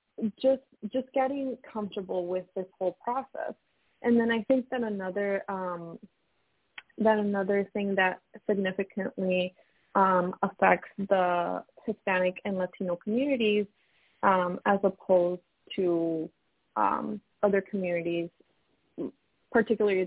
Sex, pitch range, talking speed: female, 180-215 Hz, 105 wpm